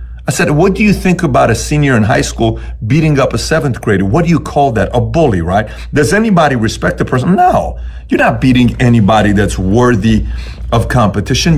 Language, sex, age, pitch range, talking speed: English, male, 40-59, 100-155 Hz, 200 wpm